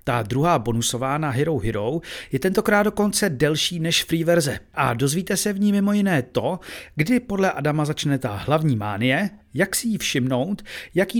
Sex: male